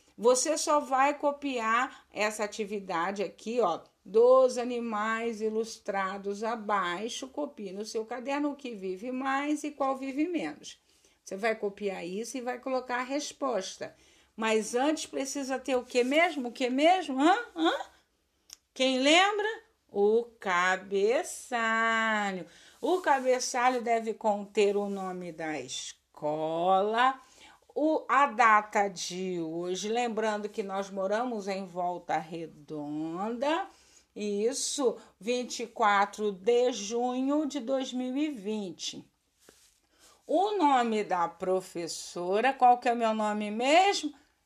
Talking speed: 110 wpm